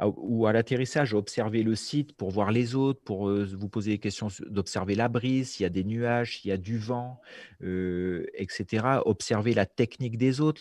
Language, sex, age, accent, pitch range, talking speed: French, male, 40-59, French, 100-125 Hz, 200 wpm